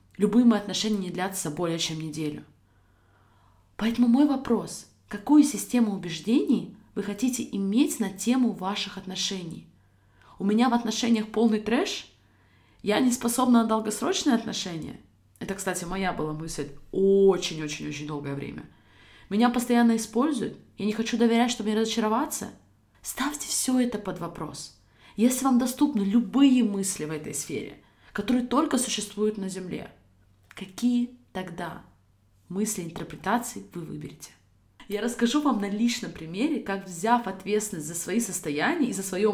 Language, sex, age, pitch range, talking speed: Russian, female, 20-39, 165-235 Hz, 140 wpm